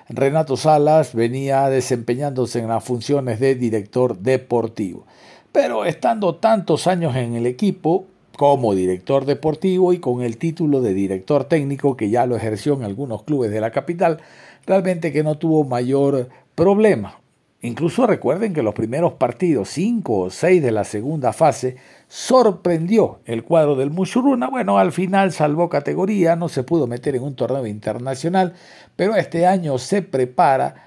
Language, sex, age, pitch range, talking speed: Spanish, male, 50-69, 125-175 Hz, 155 wpm